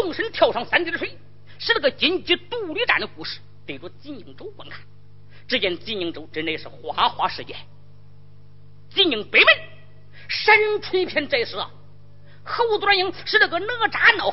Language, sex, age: Chinese, female, 40-59